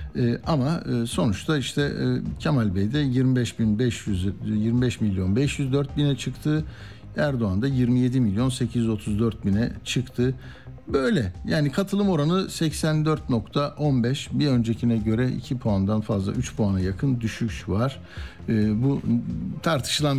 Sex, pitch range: male, 115-140 Hz